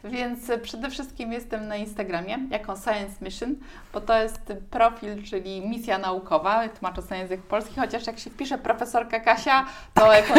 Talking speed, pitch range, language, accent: 170 wpm, 190-235 Hz, Polish, native